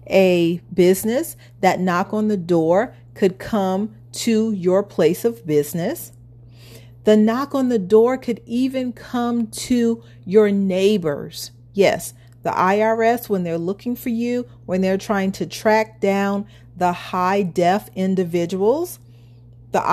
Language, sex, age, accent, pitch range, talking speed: English, female, 40-59, American, 145-215 Hz, 130 wpm